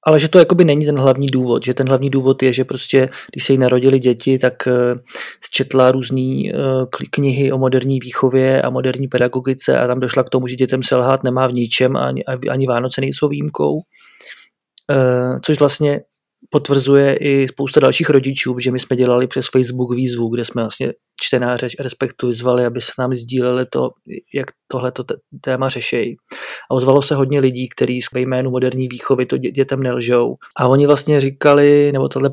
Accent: native